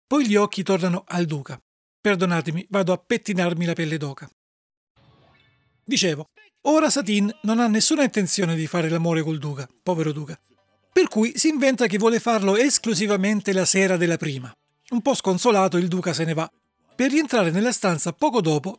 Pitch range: 170-225 Hz